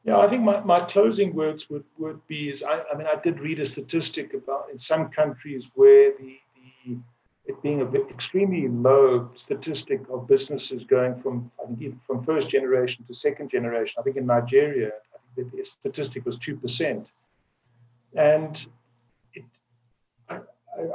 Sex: male